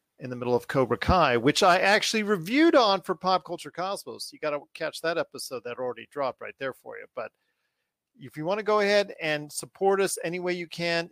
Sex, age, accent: male, 40-59, American